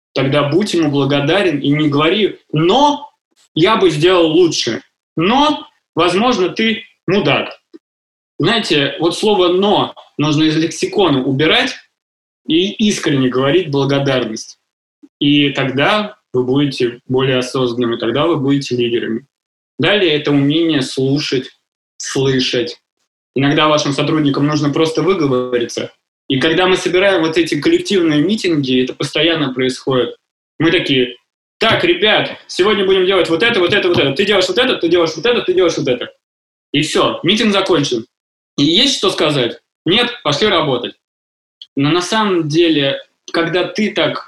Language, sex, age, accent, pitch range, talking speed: Russian, male, 20-39, native, 140-200 Hz, 140 wpm